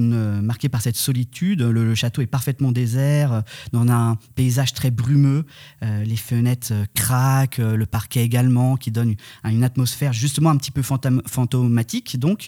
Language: French